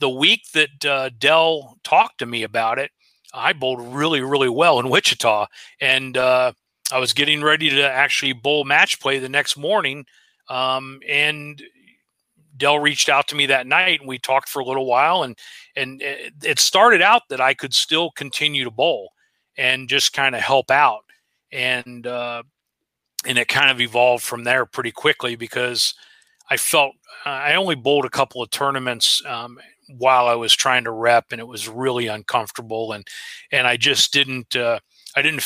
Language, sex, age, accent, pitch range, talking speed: English, male, 40-59, American, 120-145 Hz, 180 wpm